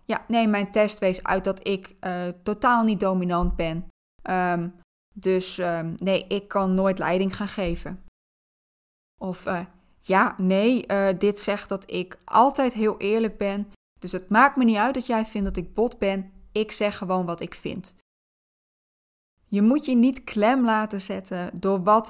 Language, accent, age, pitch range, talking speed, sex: Dutch, Dutch, 20-39, 190-240 Hz, 170 wpm, female